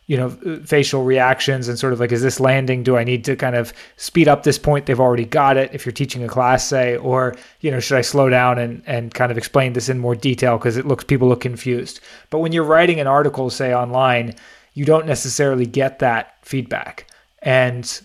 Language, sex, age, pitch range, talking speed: English, male, 20-39, 125-145 Hz, 225 wpm